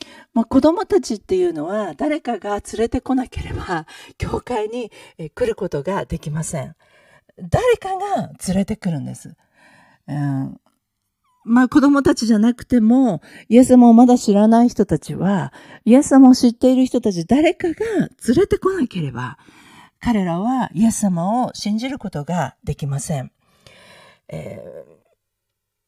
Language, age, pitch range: Japanese, 50-69, 150-235 Hz